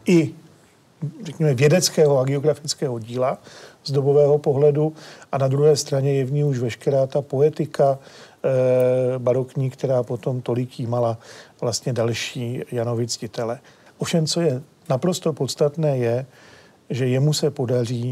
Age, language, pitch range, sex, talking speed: 40-59, Czech, 125-145 Hz, male, 130 wpm